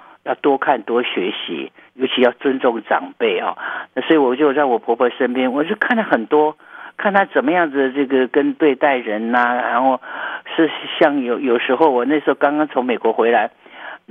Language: Chinese